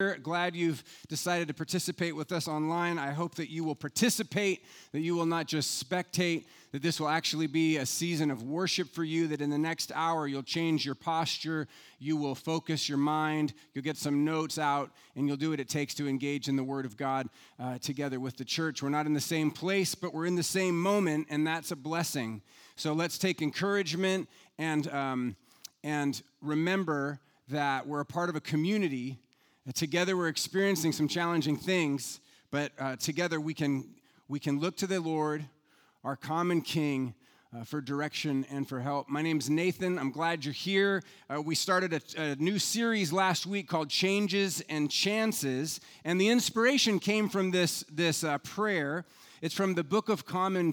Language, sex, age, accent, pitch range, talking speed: English, male, 30-49, American, 145-180 Hz, 190 wpm